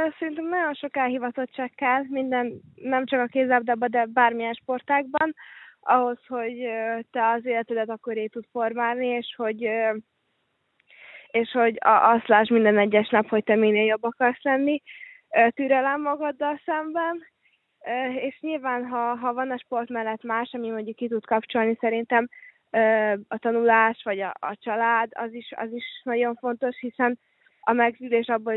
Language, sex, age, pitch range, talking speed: Hungarian, female, 20-39, 225-265 Hz, 145 wpm